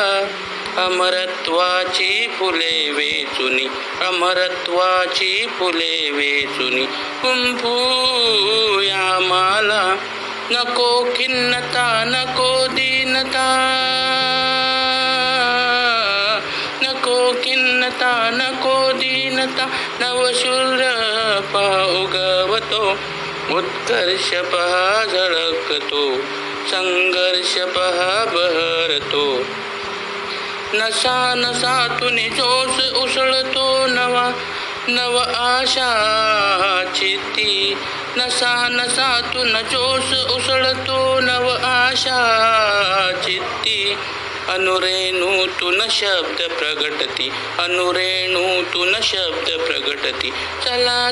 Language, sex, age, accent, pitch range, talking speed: Marathi, male, 50-69, native, 185-255 Hz, 50 wpm